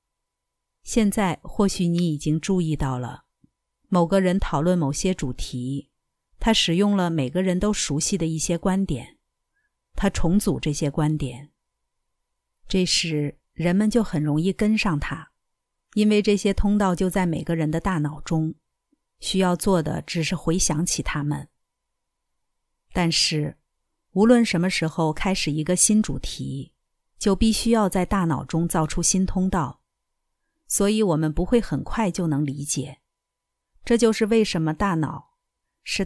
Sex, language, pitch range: female, Chinese, 155-210 Hz